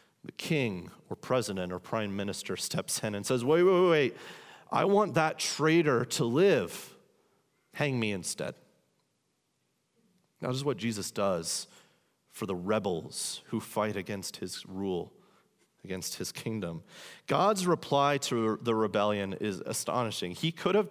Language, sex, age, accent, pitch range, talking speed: English, male, 30-49, American, 120-185 Hz, 145 wpm